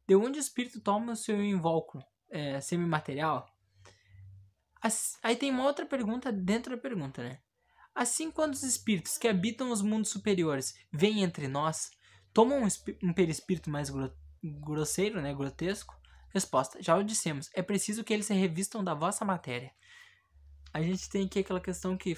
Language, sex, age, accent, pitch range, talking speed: Portuguese, male, 20-39, Brazilian, 155-210 Hz, 170 wpm